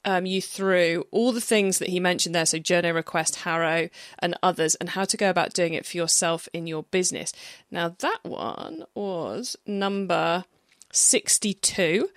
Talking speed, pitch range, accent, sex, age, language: 170 wpm, 170-220 Hz, British, female, 20-39, English